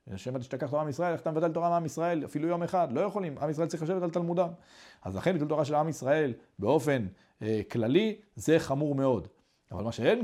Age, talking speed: 40-59, 225 wpm